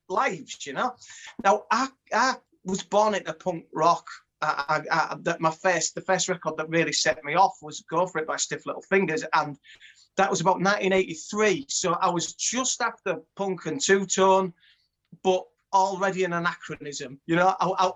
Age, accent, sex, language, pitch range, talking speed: 30-49, British, male, English, 160-205 Hz, 185 wpm